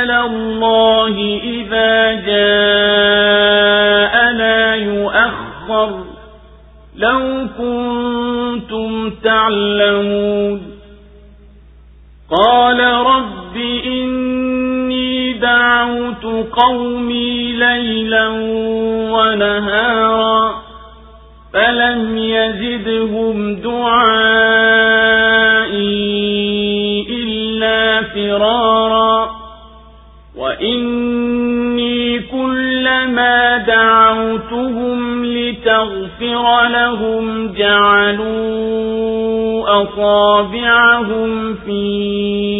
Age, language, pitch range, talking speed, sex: 50-69, Swahili, 205-235 Hz, 40 wpm, male